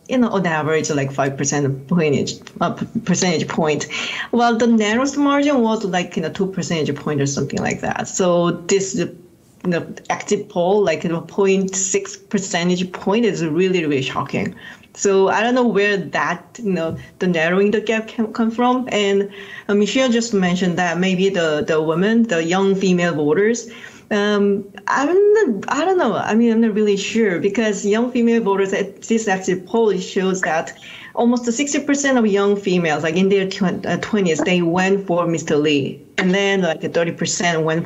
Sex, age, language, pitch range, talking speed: female, 40-59, English, 170-210 Hz, 180 wpm